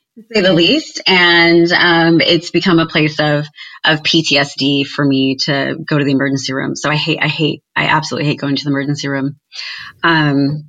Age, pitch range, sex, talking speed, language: 30-49, 150-175 Hz, female, 195 wpm, English